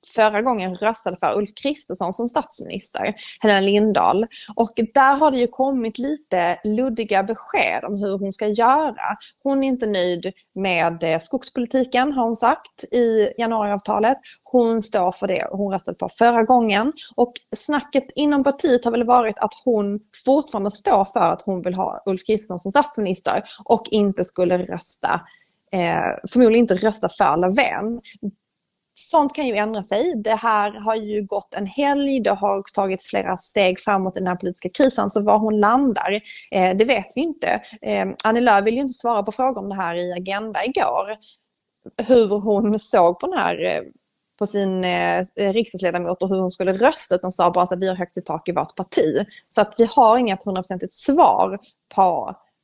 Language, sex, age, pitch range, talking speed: Swedish, female, 20-39, 190-245 Hz, 175 wpm